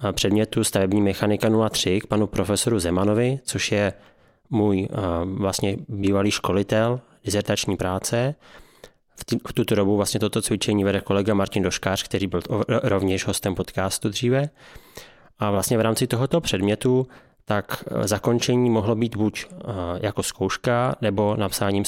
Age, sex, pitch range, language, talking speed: 20-39, male, 100-115 Hz, Czech, 130 wpm